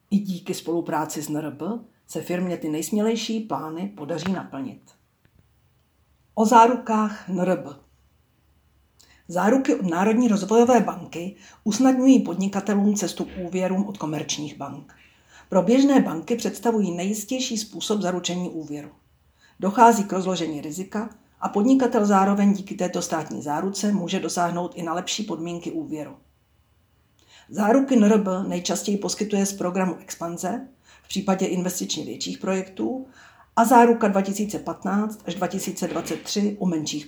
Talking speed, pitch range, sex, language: 120 wpm, 170-215 Hz, female, Czech